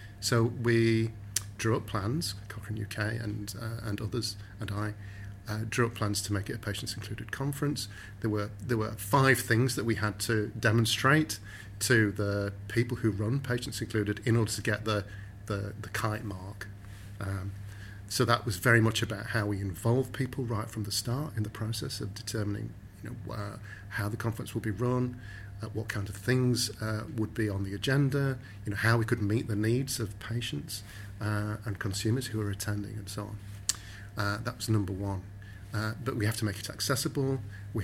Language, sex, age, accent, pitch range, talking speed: English, male, 40-59, British, 105-115 Hz, 200 wpm